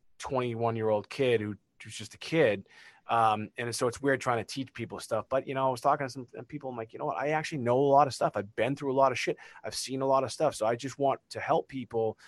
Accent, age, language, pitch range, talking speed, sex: American, 20-39, English, 110-130 Hz, 295 wpm, male